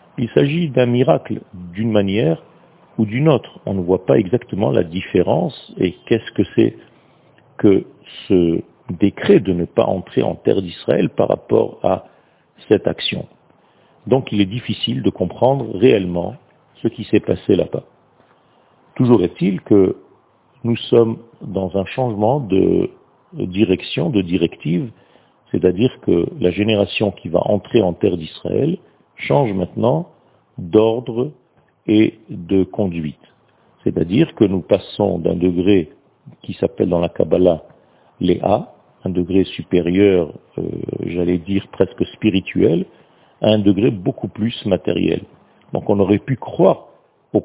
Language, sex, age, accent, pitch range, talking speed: French, male, 50-69, French, 90-120 Hz, 135 wpm